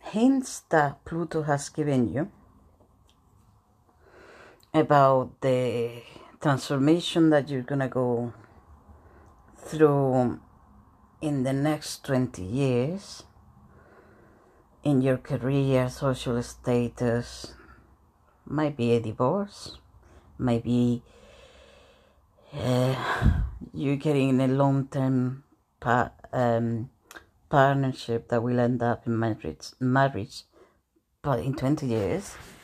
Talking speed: 90 wpm